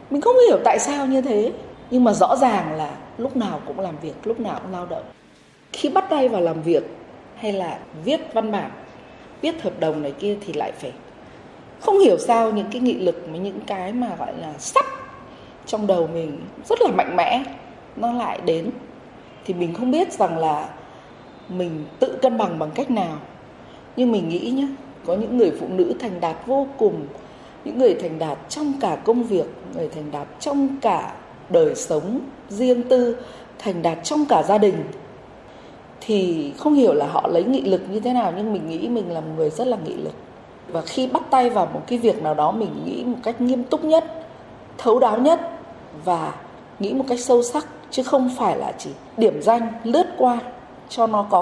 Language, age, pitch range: Vietnamese, 20-39, 185-270 Hz